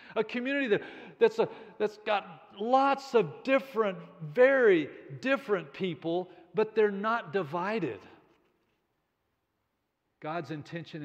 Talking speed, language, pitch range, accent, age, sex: 90 wpm, English, 135-190 Hz, American, 50-69, male